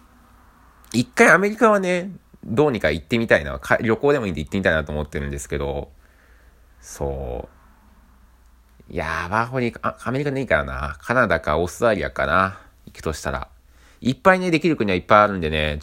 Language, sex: Japanese, male